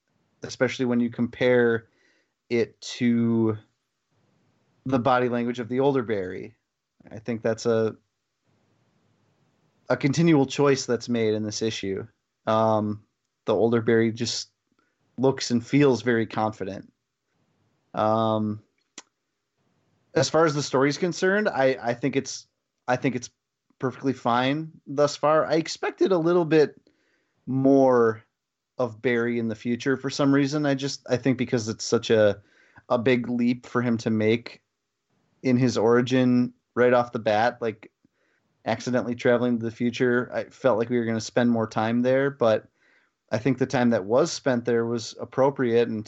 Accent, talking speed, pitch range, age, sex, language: American, 155 wpm, 115-135 Hz, 30-49, male, English